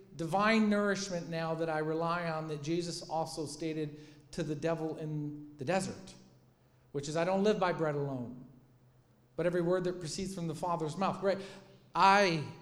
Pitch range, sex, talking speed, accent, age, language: 135-200 Hz, male, 165 wpm, American, 40-59, English